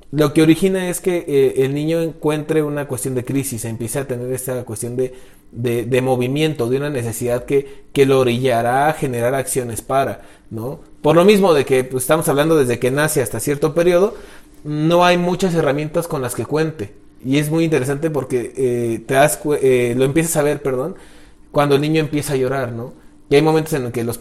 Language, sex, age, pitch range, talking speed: Spanish, male, 30-49, 125-160 Hz, 210 wpm